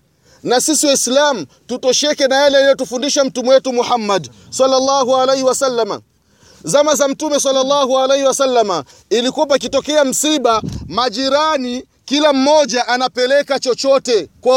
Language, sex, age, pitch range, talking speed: Swahili, male, 30-49, 235-285 Hz, 120 wpm